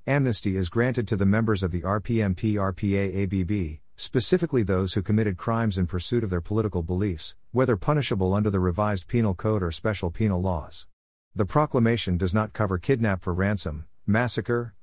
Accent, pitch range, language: American, 90-115 Hz, English